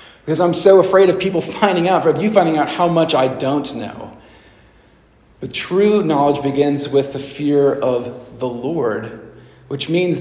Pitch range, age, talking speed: 140-165 Hz, 40-59, 175 wpm